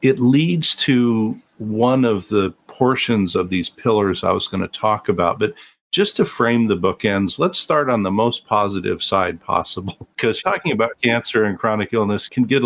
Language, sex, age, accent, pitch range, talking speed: English, male, 50-69, American, 95-120 Hz, 185 wpm